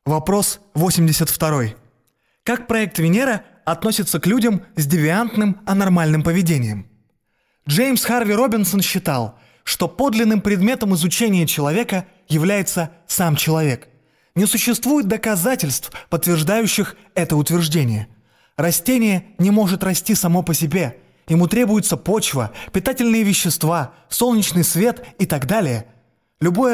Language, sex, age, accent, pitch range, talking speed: Russian, male, 20-39, native, 155-220 Hz, 110 wpm